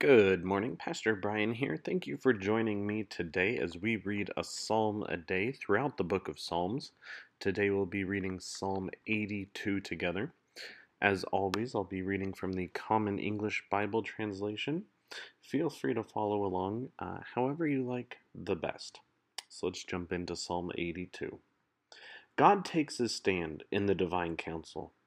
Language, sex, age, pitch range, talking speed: English, male, 30-49, 95-120 Hz, 160 wpm